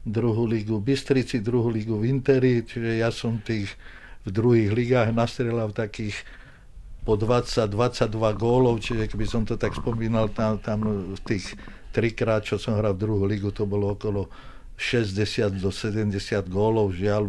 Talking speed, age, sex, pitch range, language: 155 wpm, 50-69, male, 95-115 Hz, Czech